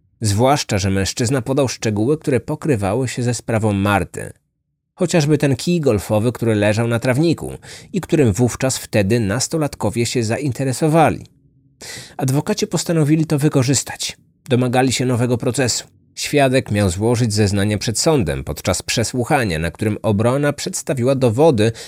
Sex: male